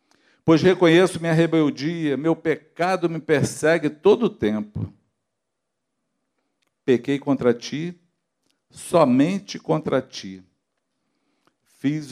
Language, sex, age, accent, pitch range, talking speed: Portuguese, male, 60-79, Brazilian, 145-210 Hz, 90 wpm